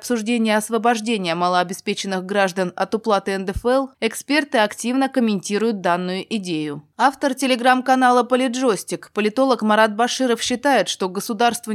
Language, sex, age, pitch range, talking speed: Russian, female, 20-39, 190-245 Hz, 105 wpm